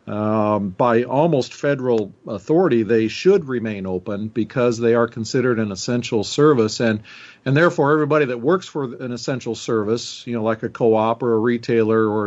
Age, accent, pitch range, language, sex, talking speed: 50-69, American, 110-130 Hz, English, male, 170 wpm